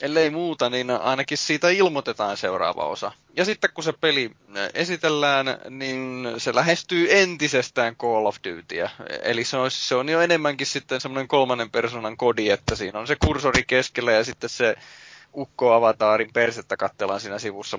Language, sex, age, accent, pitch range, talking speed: Finnish, male, 20-39, native, 110-145 Hz, 160 wpm